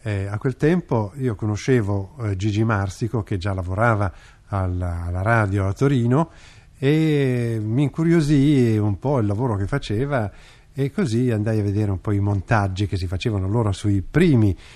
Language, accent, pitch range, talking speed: Italian, native, 100-130 Hz, 165 wpm